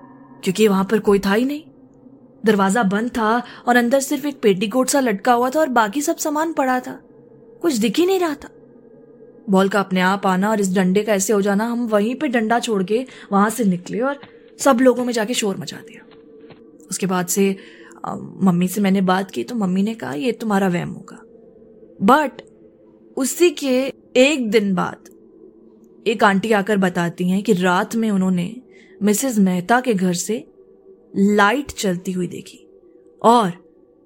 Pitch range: 195-255 Hz